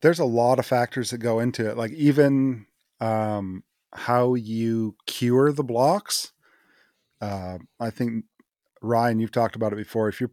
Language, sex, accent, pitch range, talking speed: English, male, American, 115-140 Hz, 165 wpm